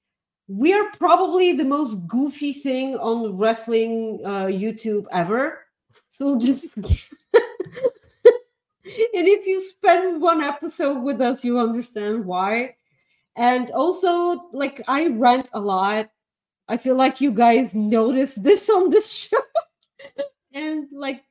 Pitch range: 195-285 Hz